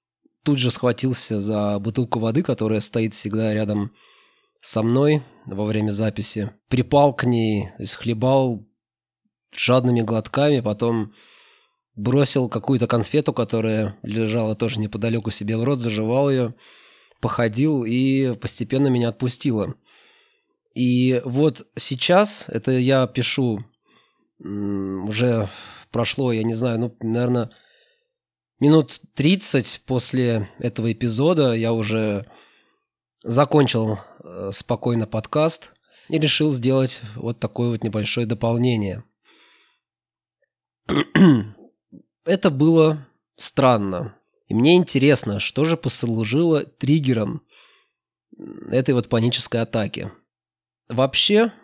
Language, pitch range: Russian, 110-135 Hz